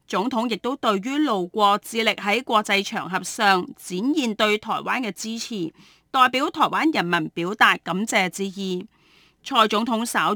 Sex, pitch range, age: female, 190-260 Hz, 30-49